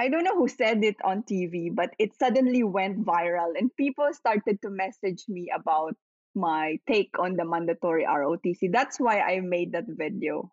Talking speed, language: 180 wpm, English